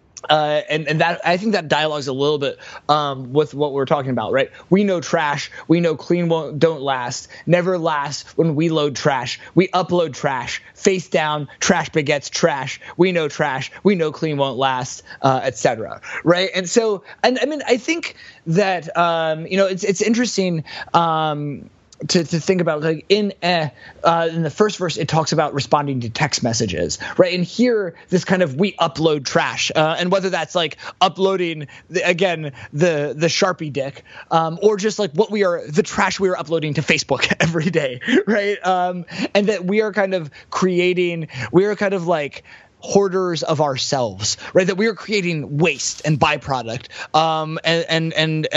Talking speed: 195 wpm